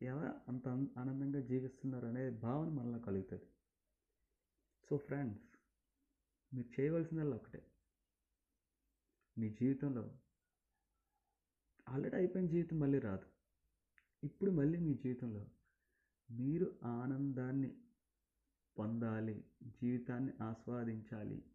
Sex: male